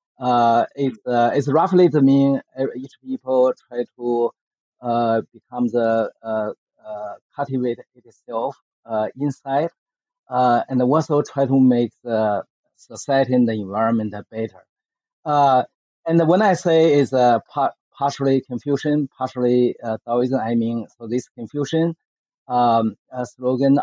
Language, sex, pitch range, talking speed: English, male, 115-140 Hz, 135 wpm